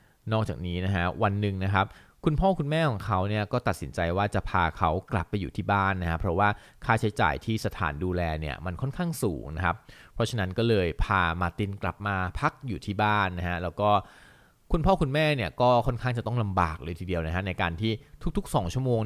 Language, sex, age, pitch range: Thai, male, 20-39, 90-115 Hz